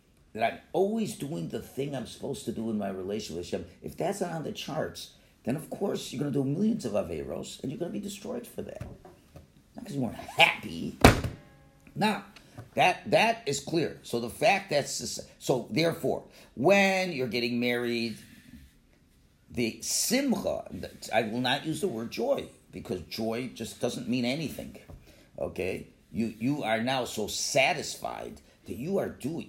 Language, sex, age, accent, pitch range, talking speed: English, male, 50-69, American, 110-155 Hz, 175 wpm